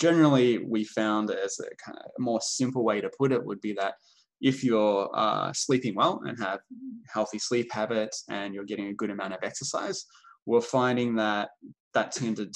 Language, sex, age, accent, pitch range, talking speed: English, male, 10-29, Australian, 105-125 Hz, 175 wpm